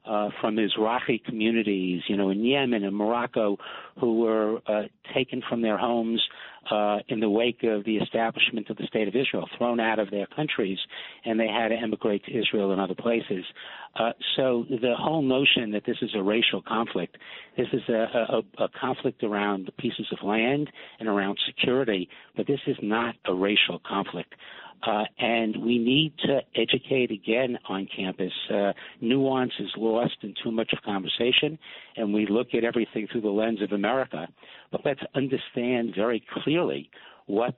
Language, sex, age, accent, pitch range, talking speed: English, male, 60-79, American, 100-120 Hz, 175 wpm